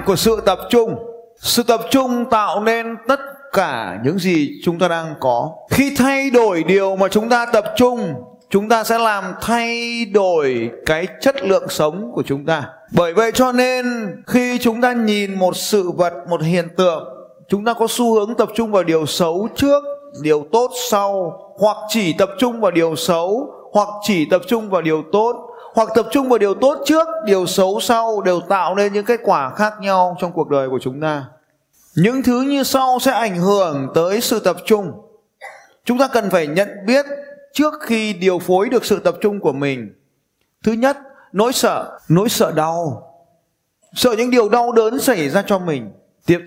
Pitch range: 175-235 Hz